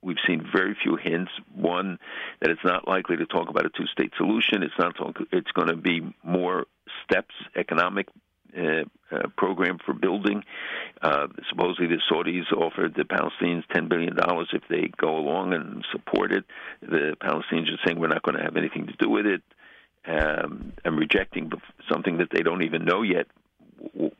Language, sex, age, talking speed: English, male, 60-79, 180 wpm